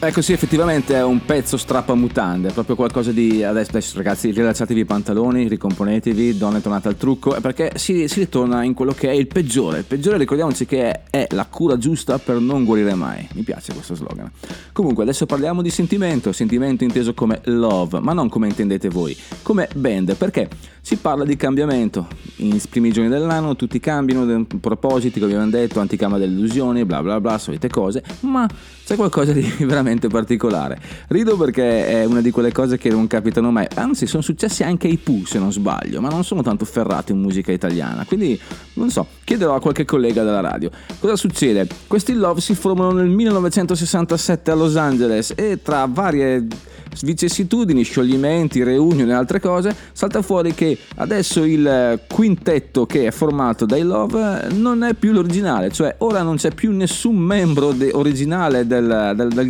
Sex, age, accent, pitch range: male, 30-49, native, 115-170 Hz